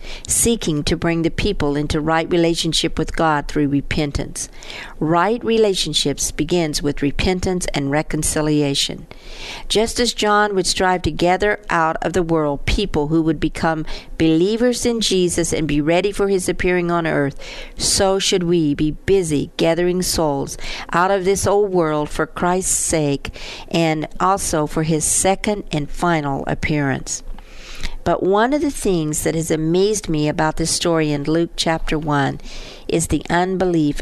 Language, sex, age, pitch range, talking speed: English, female, 50-69, 155-195 Hz, 155 wpm